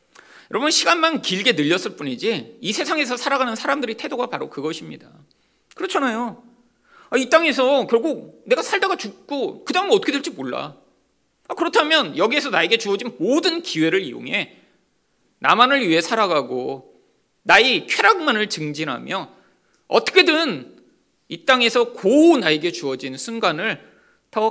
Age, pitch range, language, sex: 40-59, 215-320 Hz, Korean, male